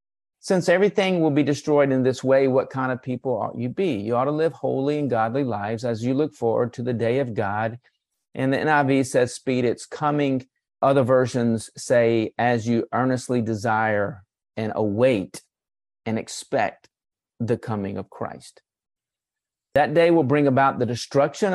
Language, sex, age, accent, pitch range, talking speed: English, male, 40-59, American, 115-140 Hz, 170 wpm